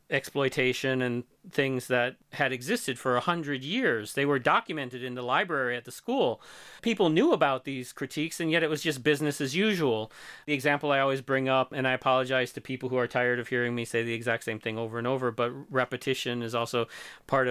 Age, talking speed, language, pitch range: 30-49, 215 wpm, English, 125-150 Hz